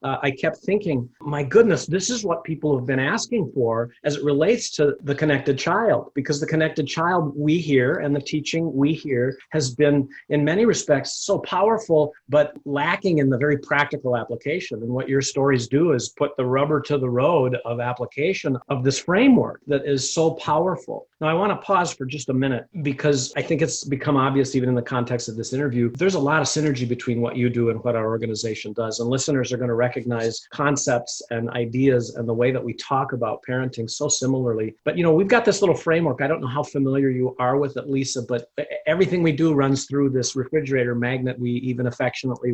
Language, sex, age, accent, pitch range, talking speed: English, male, 50-69, American, 125-150 Hz, 215 wpm